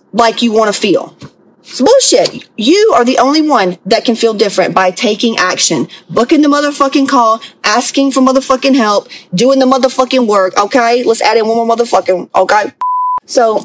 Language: English